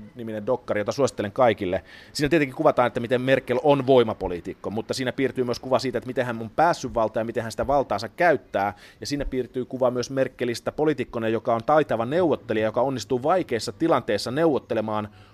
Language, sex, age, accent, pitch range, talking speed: Finnish, male, 30-49, native, 100-125 Hz, 180 wpm